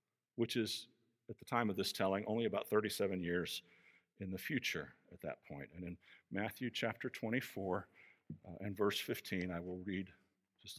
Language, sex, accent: English, male, American